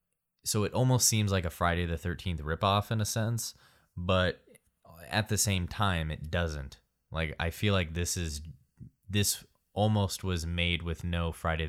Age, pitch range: 20-39, 75-90 Hz